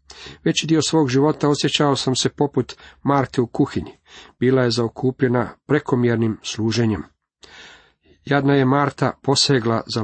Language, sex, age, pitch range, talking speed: Croatian, male, 40-59, 115-140 Hz, 125 wpm